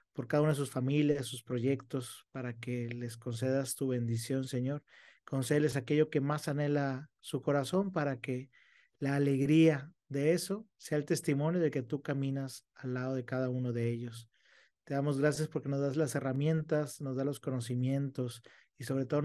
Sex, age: male, 40-59